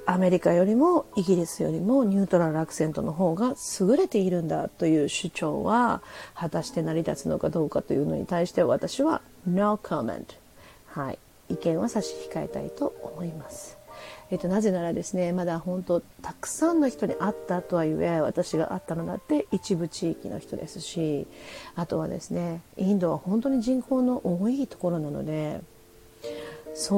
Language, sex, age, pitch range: Japanese, female, 40-59, 165-220 Hz